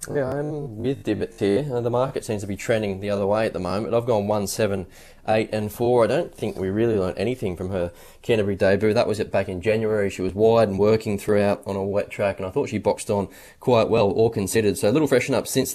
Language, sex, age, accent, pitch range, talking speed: English, male, 20-39, Australian, 95-115 Hz, 255 wpm